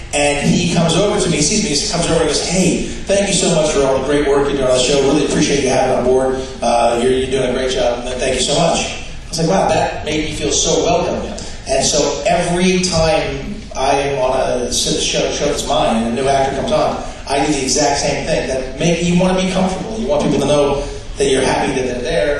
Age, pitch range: 30-49, 125-160 Hz